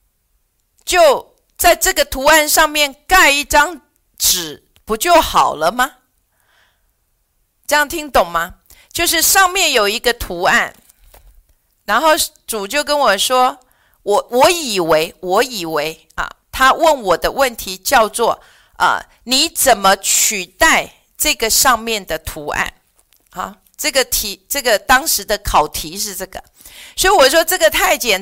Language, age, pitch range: Chinese, 50-69, 210-320 Hz